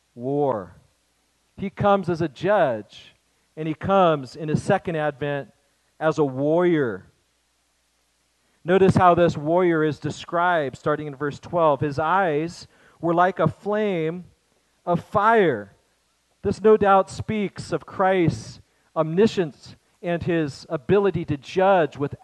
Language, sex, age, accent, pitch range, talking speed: English, male, 40-59, American, 145-185 Hz, 125 wpm